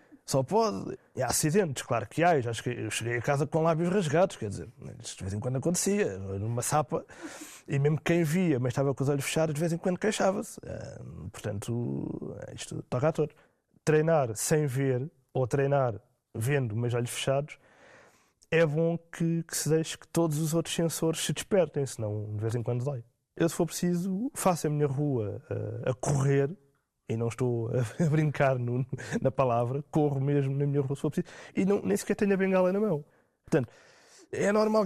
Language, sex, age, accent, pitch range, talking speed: Portuguese, male, 20-39, Brazilian, 125-170 Hz, 195 wpm